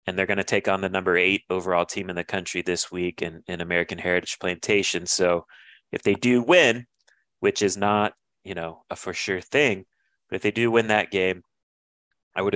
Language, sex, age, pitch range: English, male, 30-49, 90-110 Hz